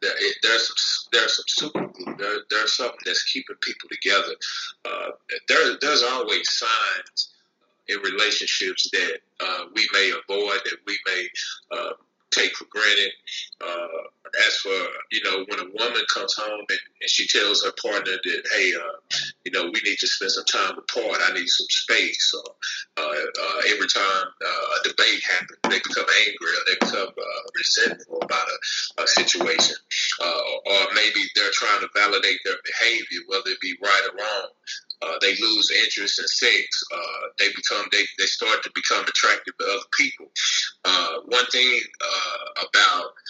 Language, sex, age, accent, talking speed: English, male, 30-49, American, 170 wpm